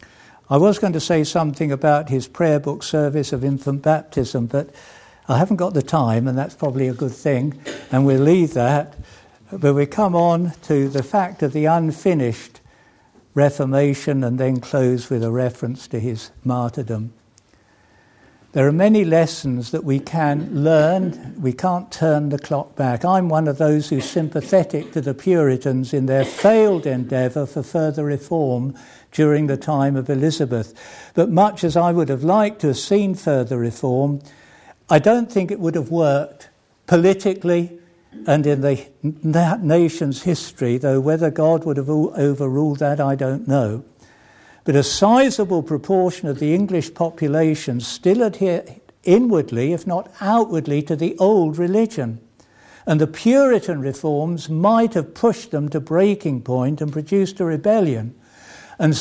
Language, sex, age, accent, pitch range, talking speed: English, male, 60-79, British, 135-170 Hz, 155 wpm